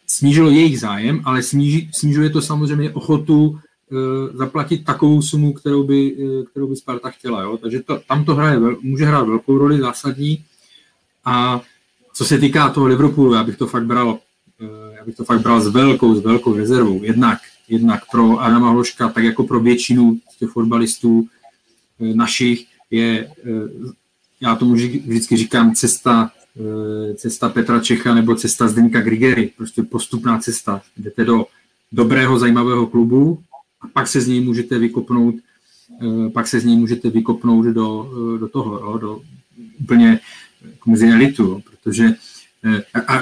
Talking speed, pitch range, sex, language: 150 wpm, 115-140 Hz, male, Czech